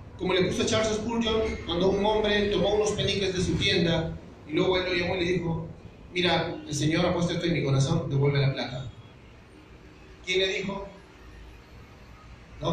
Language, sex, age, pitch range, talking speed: Spanish, male, 30-49, 135-185 Hz, 185 wpm